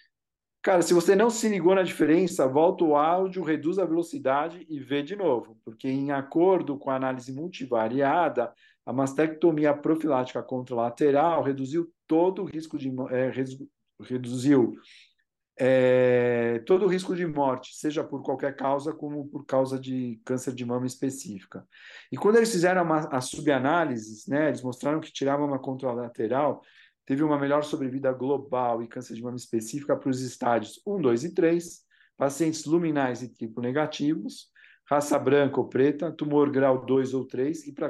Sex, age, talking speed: male, 50-69, 160 wpm